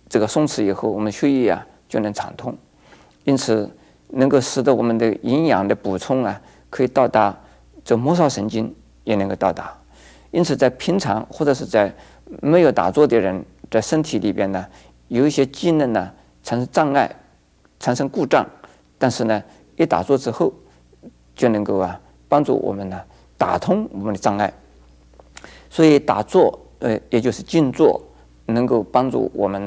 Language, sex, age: Chinese, male, 50-69